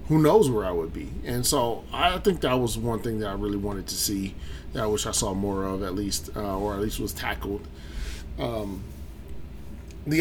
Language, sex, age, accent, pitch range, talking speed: English, male, 30-49, American, 80-130 Hz, 220 wpm